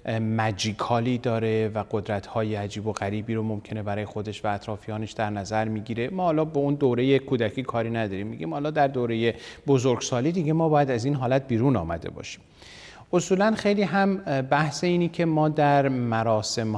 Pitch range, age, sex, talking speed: 105-135 Hz, 30-49, male, 170 wpm